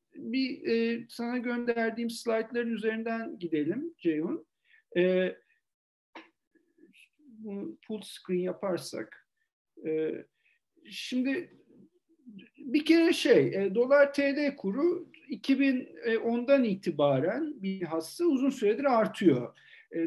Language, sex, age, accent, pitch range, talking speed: Turkish, male, 50-69, native, 195-280 Hz, 90 wpm